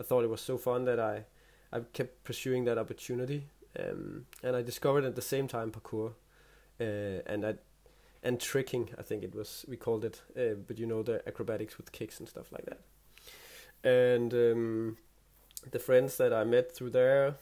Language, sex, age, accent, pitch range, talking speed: English, male, 20-39, Danish, 110-135 Hz, 190 wpm